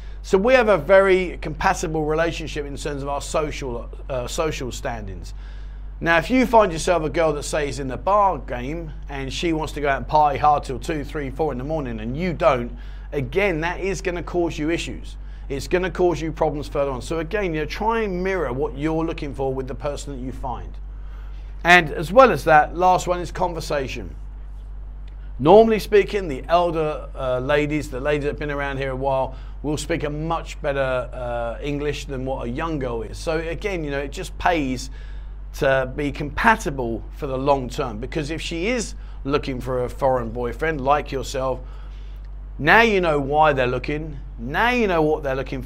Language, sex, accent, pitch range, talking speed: English, male, British, 130-165 Hz, 200 wpm